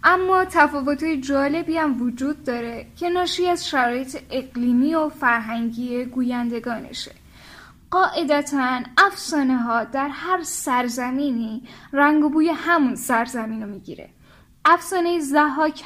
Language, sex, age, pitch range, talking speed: Persian, female, 10-29, 245-315 Hz, 105 wpm